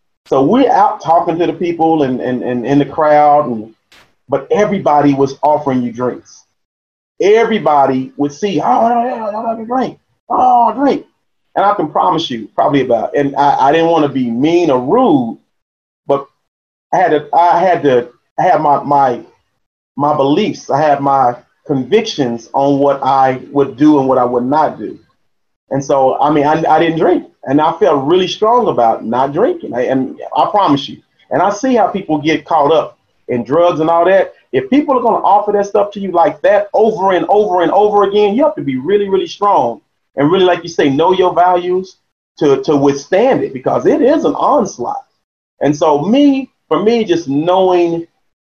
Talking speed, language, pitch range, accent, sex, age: 195 wpm, English, 140-215 Hz, American, male, 30-49